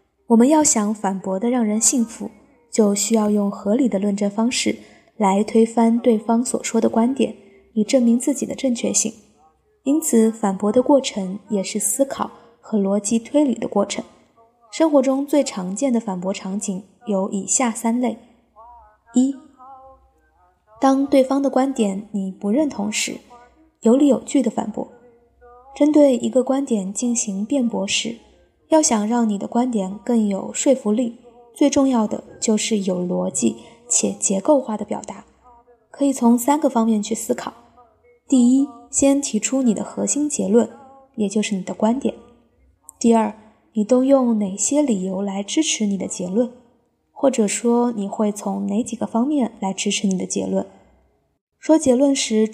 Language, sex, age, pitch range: Chinese, female, 20-39, 210-265 Hz